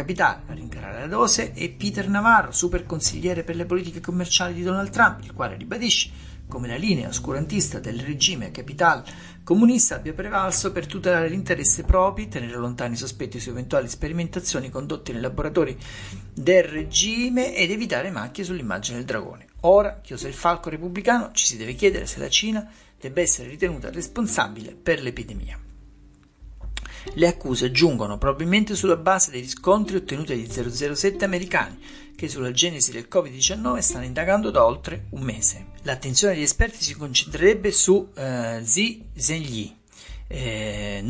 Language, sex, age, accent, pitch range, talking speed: Italian, male, 50-69, native, 120-190 Hz, 150 wpm